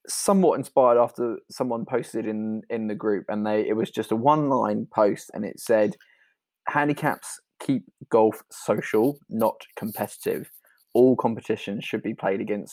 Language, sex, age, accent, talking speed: English, male, 20-39, British, 155 wpm